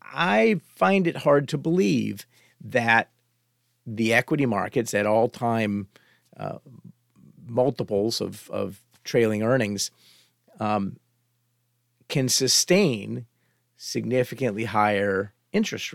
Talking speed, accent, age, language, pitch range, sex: 95 wpm, American, 50-69, English, 110-135 Hz, male